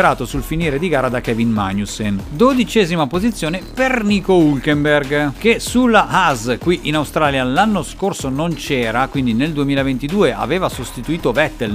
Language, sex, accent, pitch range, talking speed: Italian, male, native, 125-185 Hz, 145 wpm